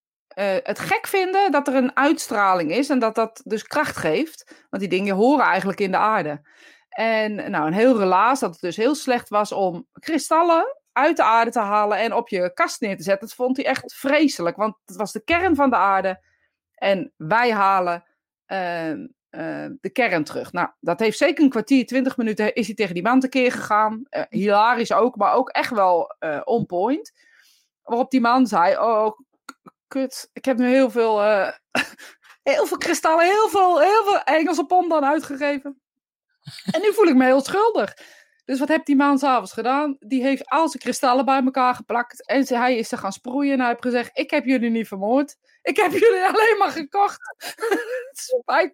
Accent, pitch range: Dutch, 220-300 Hz